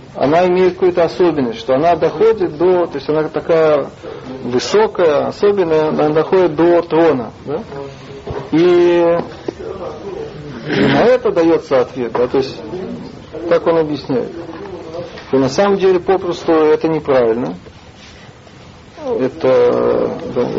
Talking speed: 115 wpm